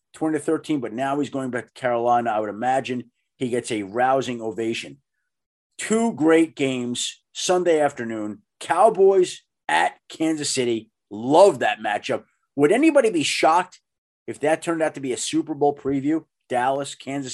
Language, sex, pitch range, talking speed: English, male, 120-155 Hz, 160 wpm